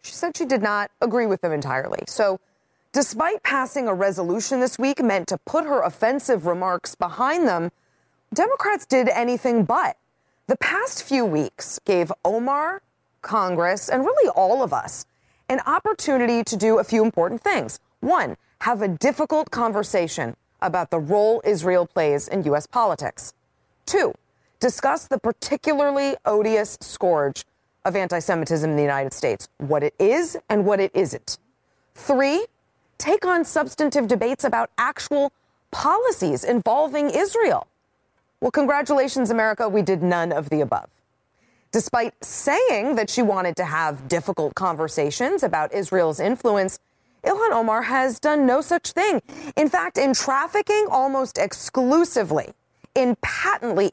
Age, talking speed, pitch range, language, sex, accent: 30-49, 140 wpm, 190-285 Hz, English, female, American